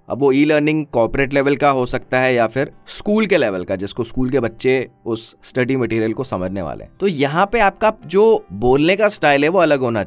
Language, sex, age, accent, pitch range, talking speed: Hindi, male, 30-49, native, 105-150 Hz, 225 wpm